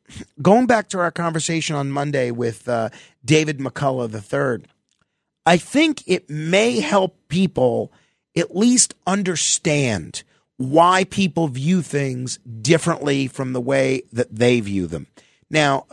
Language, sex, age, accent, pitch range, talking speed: English, male, 40-59, American, 125-165 Hz, 130 wpm